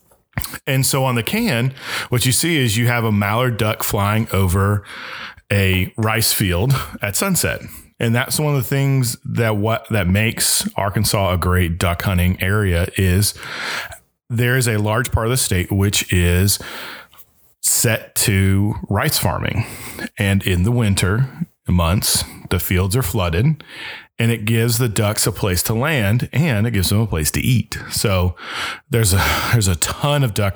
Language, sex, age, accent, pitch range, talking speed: English, male, 30-49, American, 95-125 Hz, 170 wpm